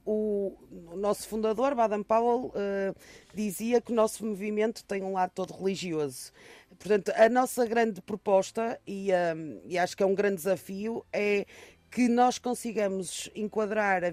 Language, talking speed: Portuguese, 140 wpm